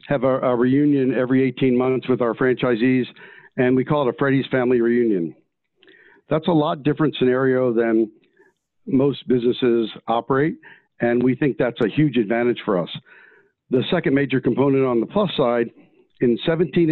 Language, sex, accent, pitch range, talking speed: English, male, American, 125-150 Hz, 165 wpm